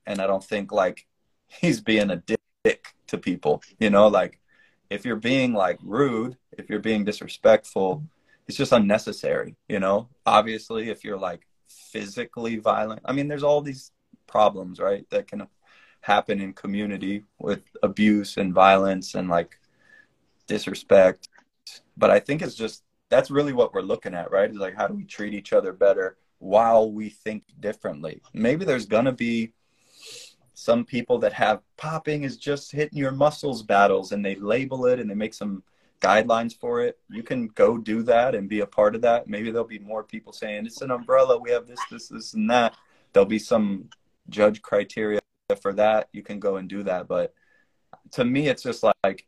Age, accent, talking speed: 20-39, American, 185 wpm